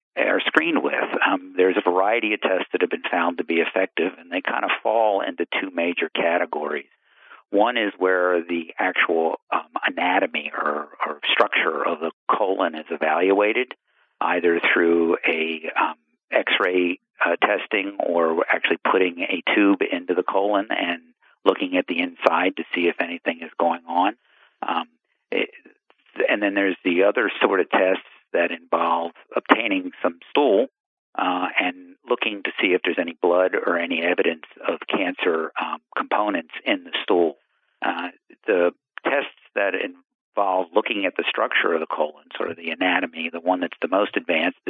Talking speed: 160 wpm